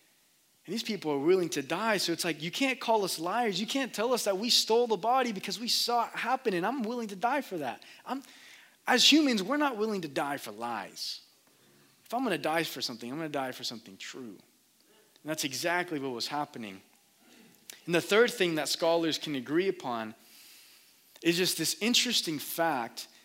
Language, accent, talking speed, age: English, American, 205 wpm, 20-39